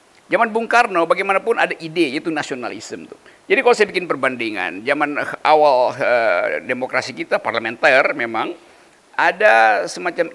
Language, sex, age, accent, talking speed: Indonesian, male, 50-69, native, 130 wpm